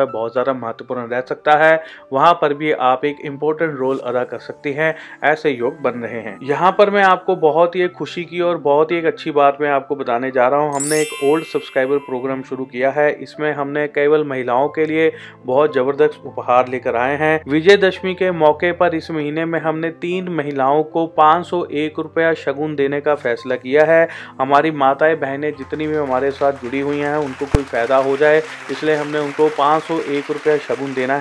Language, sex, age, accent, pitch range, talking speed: Hindi, male, 30-49, native, 140-160 Hz, 110 wpm